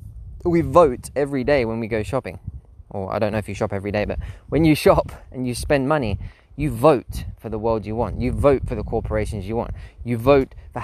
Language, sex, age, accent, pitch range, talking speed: English, male, 20-39, British, 100-125 Hz, 235 wpm